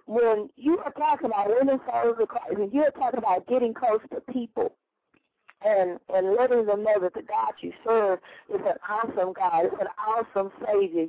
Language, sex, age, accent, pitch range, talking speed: English, female, 40-59, American, 230-290 Hz, 175 wpm